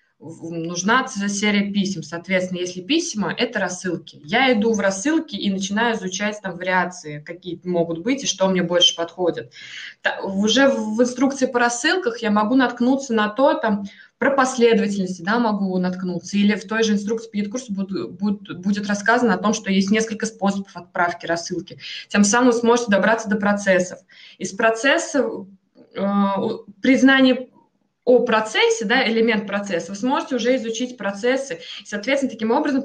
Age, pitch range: 20-39, 190-240 Hz